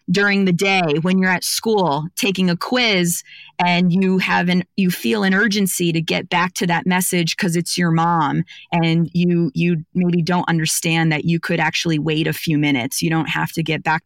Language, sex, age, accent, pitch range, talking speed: English, female, 30-49, American, 160-190 Hz, 205 wpm